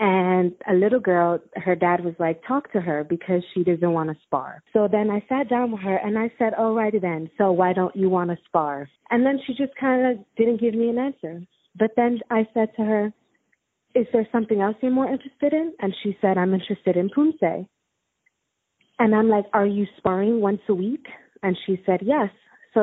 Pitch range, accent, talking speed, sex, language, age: 185-235 Hz, American, 220 wpm, female, English, 30-49